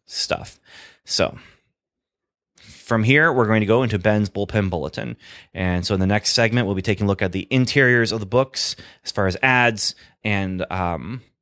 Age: 30-49